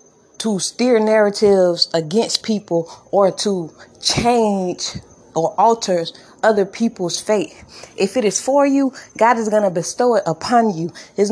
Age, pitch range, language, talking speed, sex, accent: 20-39, 185-235 Hz, English, 145 wpm, female, American